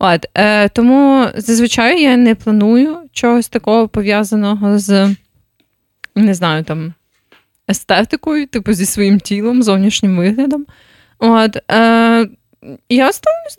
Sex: female